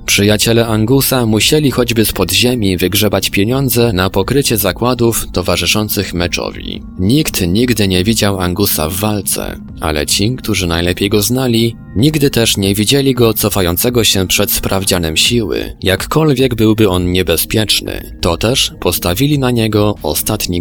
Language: Polish